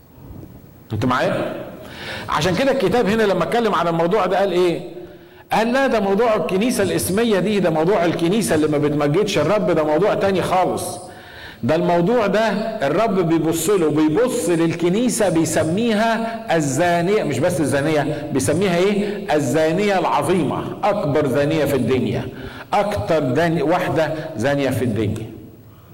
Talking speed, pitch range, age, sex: 130 wpm, 125-180 Hz, 50-69, male